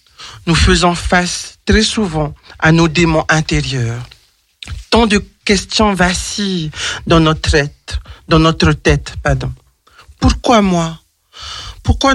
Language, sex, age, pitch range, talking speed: French, male, 60-79, 155-200 Hz, 115 wpm